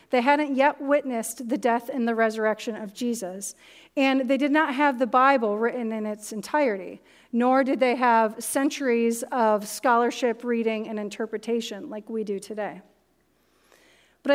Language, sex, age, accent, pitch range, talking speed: English, female, 40-59, American, 220-280 Hz, 155 wpm